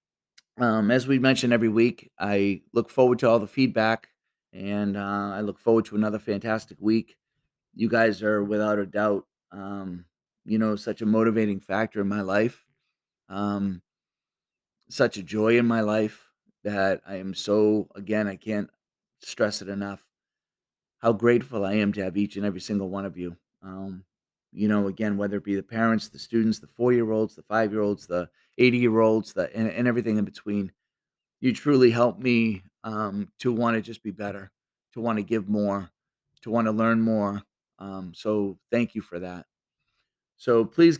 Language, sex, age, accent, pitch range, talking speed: English, male, 30-49, American, 100-115 Hz, 175 wpm